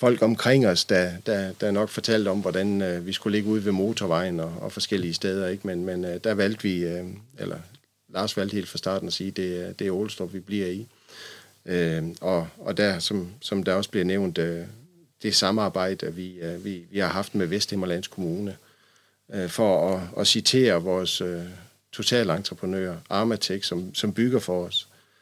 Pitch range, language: 90-105 Hz, Danish